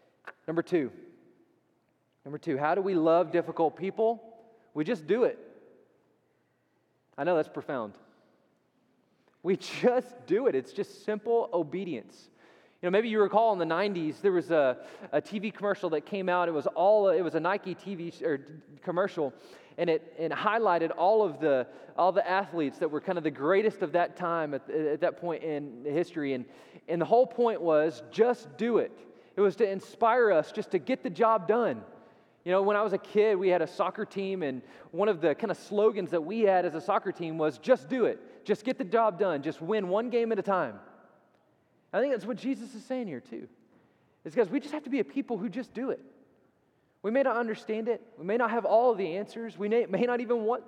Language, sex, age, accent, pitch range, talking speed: English, male, 20-39, American, 170-235 Hz, 210 wpm